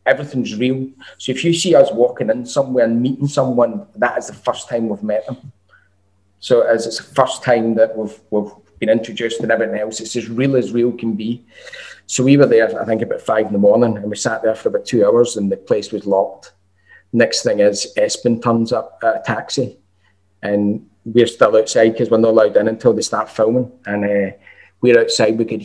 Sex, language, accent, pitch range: male, English, British, 105-130 Hz